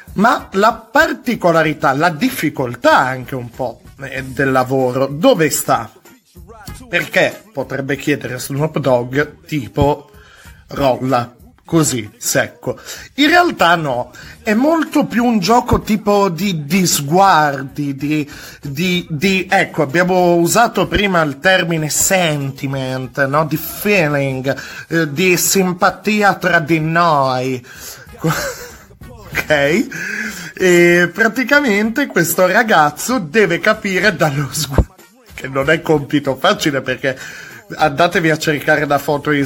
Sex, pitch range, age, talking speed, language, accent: male, 140-185 Hz, 30-49, 110 wpm, Italian, native